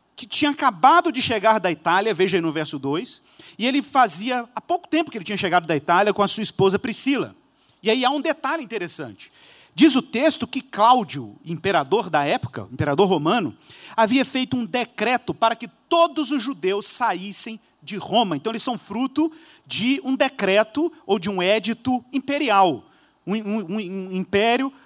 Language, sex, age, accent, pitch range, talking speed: Portuguese, male, 40-59, Brazilian, 195-265 Hz, 180 wpm